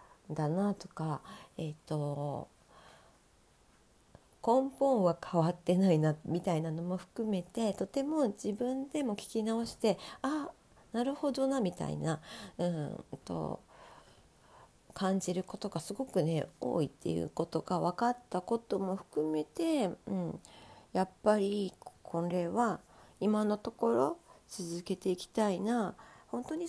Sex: female